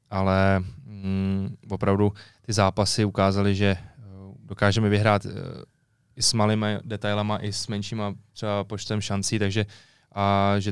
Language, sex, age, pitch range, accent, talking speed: Czech, male, 20-39, 95-105 Hz, native, 120 wpm